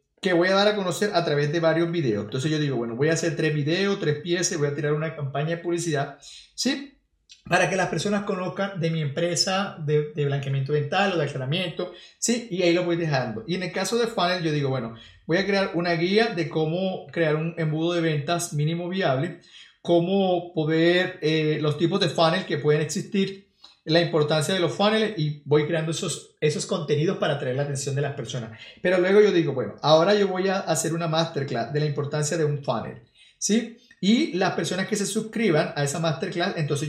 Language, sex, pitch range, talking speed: Spanish, male, 150-190 Hz, 215 wpm